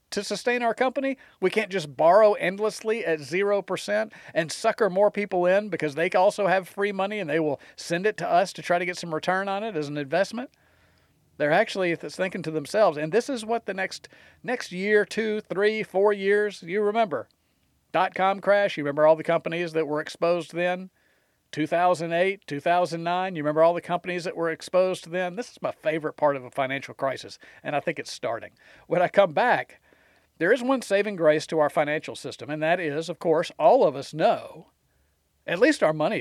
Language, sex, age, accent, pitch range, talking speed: English, male, 40-59, American, 155-205 Hz, 200 wpm